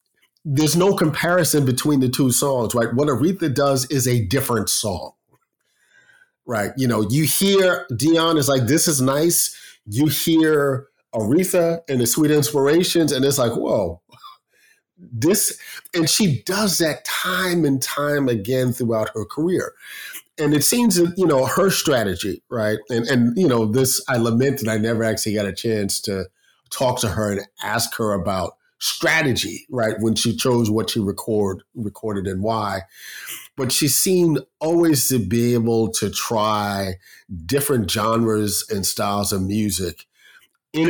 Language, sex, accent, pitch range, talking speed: English, male, American, 115-150 Hz, 155 wpm